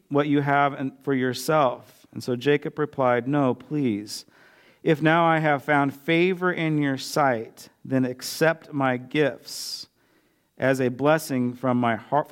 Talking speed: 135 wpm